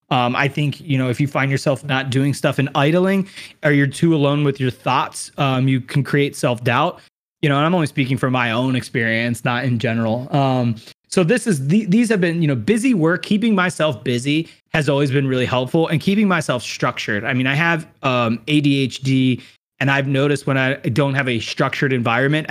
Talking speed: 210 wpm